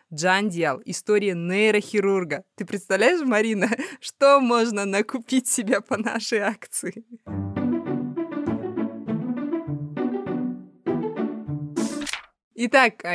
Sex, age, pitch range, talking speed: female, 20-39, 170-210 Hz, 70 wpm